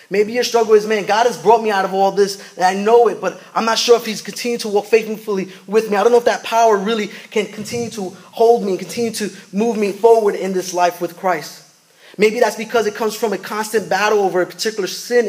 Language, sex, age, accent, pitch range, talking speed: English, male, 20-39, American, 165-215 Hz, 255 wpm